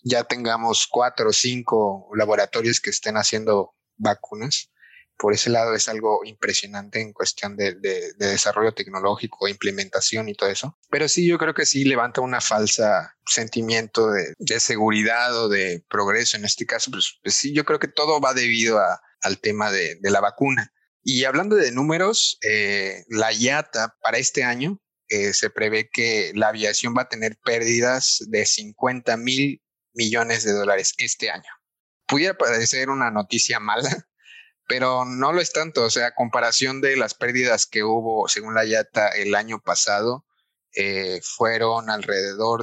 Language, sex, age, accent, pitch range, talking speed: Spanish, male, 30-49, Mexican, 110-130 Hz, 165 wpm